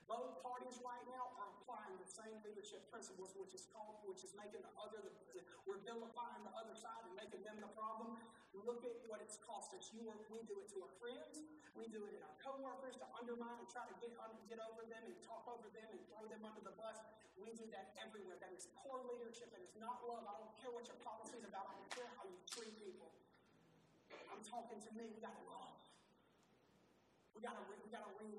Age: 40-59